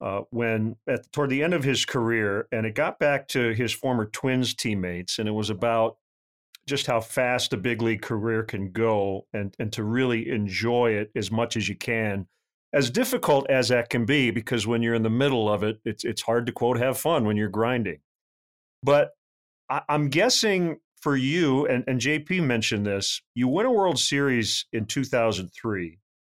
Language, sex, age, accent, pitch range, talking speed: English, male, 40-59, American, 115-155 Hz, 195 wpm